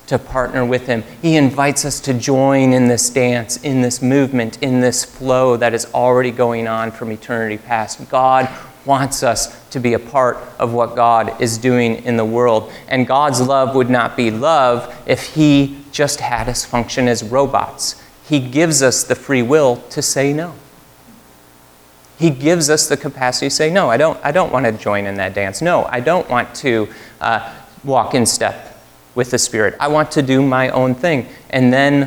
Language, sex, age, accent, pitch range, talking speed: English, male, 30-49, American, 110-130 Hz, 195 wpm